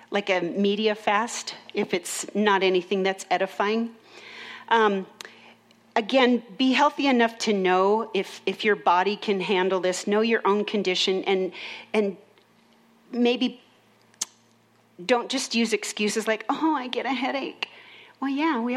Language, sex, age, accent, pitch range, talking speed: English, female, 40-59, American, 190-240 Hz, 140 wpm